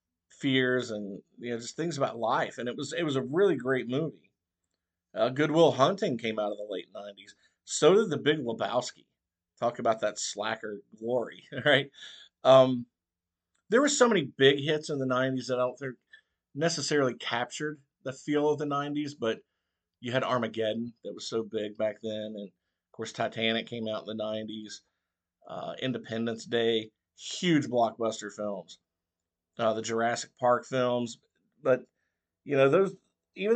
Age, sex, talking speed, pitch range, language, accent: 50-69, male, 165 wpm, 100-135 Hz, English, American